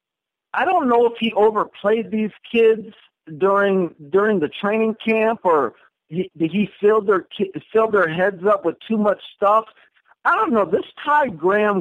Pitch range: 160-215 Hz